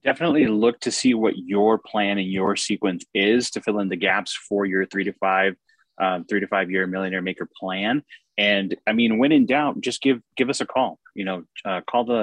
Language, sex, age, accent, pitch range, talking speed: English, male, 20-39, American, 95-105 Hz, 230 wpm